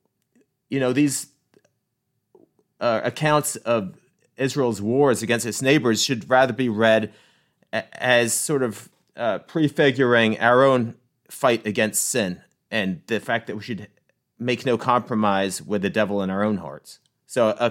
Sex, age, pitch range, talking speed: male, 30-49, 100-130 Hz, 145 wpm